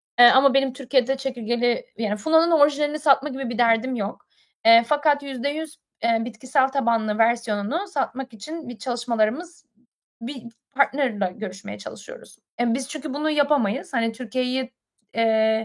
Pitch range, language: 225-285 Hz, Turkish